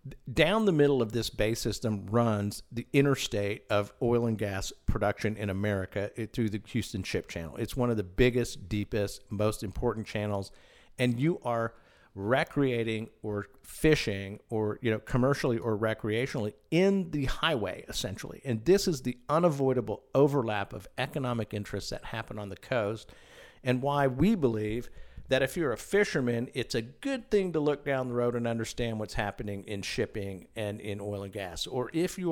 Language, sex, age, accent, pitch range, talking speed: English, male, 50-69, American, 105-145 Hz, 175 wpm